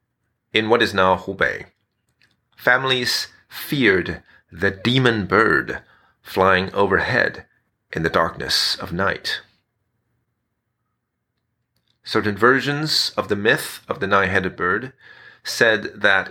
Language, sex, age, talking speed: English, male, 40-59, 105 wpm